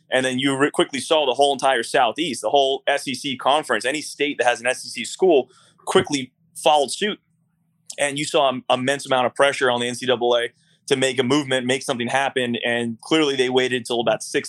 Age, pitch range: 20-39, 120-150 Hz